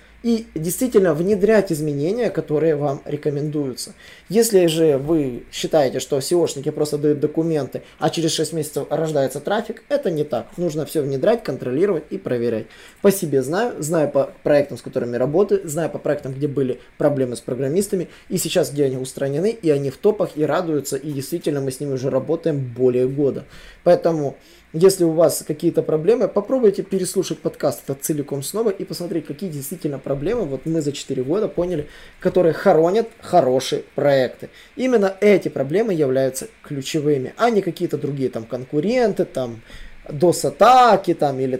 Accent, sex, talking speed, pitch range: native, male, 160 wpm, 140-180 Hz